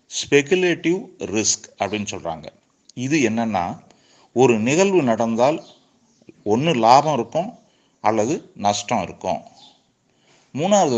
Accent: native